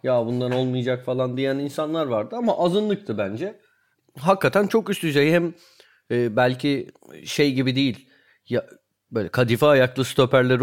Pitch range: 125-170 Hz